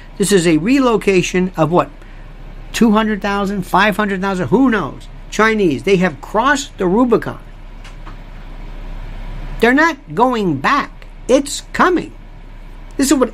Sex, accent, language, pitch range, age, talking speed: male, American, English, 140-220 Hz, 50-69, 110 wpm